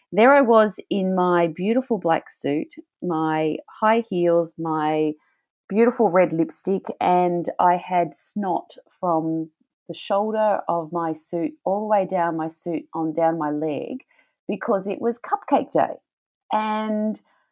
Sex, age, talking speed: female, 30-49, 140 wpm